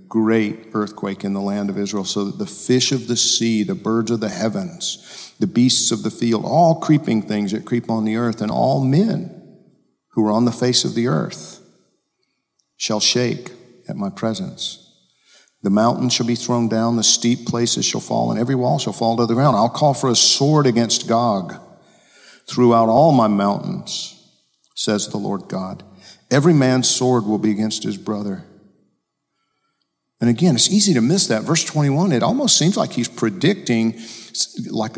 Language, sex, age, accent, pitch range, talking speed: English, male, 50-69, American, 110-155 Hz, 180 wpm